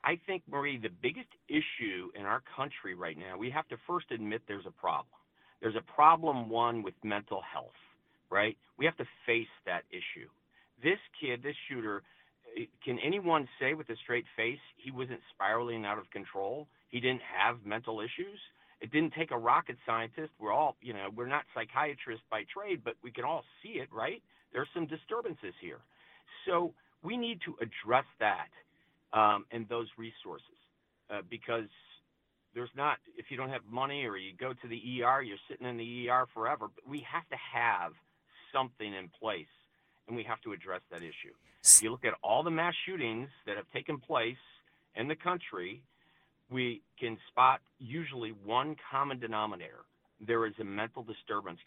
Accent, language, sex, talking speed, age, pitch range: American, English, male, 180 wpm, 50-69, 115-160 Hz